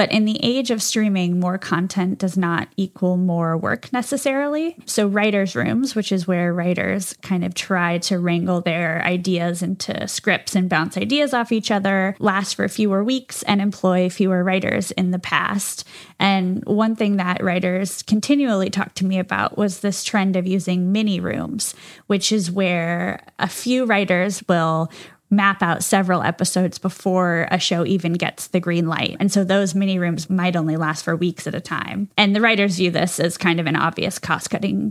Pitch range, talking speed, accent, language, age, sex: 175-205 Hz, 185 wpm, American, English, 10-29, female